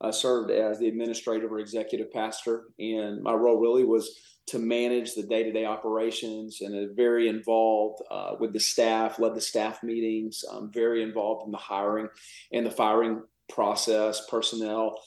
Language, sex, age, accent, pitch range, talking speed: English, male, 40-59, American, 110-125 Hz, 160 wpm